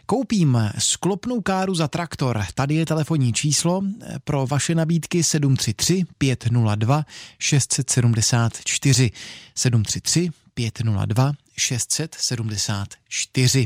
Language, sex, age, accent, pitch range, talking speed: Czech, male, 30-49, native, 120-165 Hz, 70 wpm